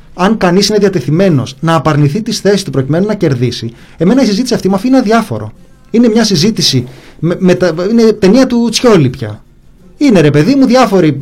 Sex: male